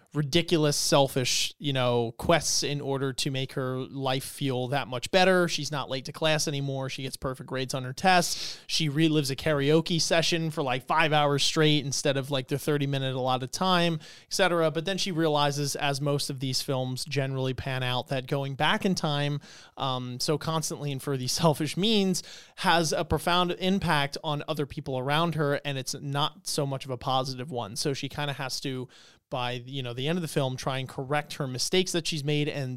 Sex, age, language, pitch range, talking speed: male, 30-49, English, 130-160 Hz, 210 wpm